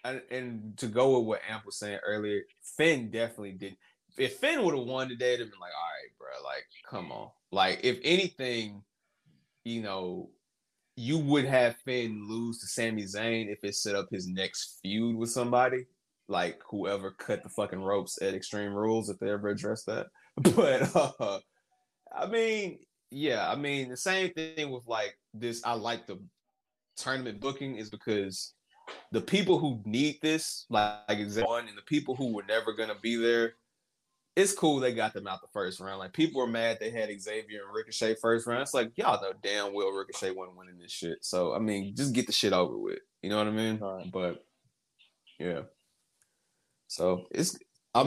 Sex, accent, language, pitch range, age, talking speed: male, American, English, 105-125 Hz, 20-39, 190 wpm